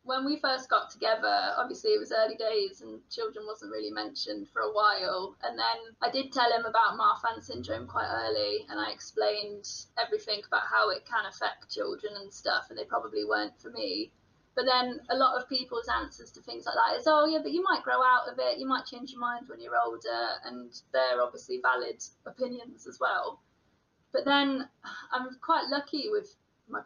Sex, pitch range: female, 230-340 Hz